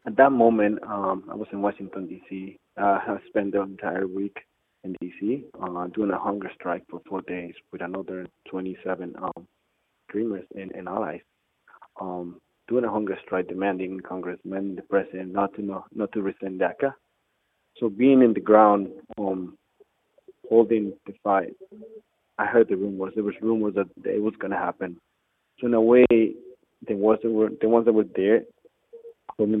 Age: 20-39